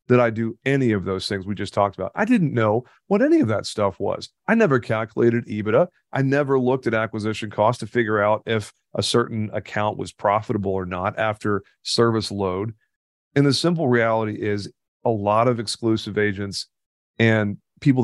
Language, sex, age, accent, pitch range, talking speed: English, male, 40-59, American, 105-130 Hz, 185 wpm